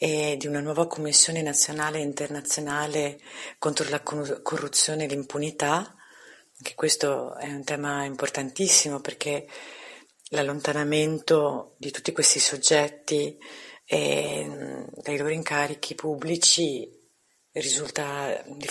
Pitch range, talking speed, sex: 140-160 Hz, 105 wpm, female